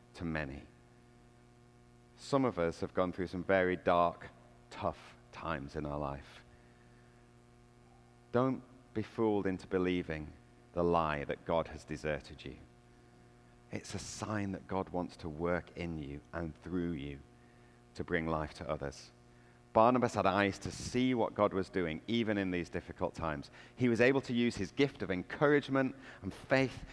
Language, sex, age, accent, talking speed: English, male, 40-59, British, 160 wpm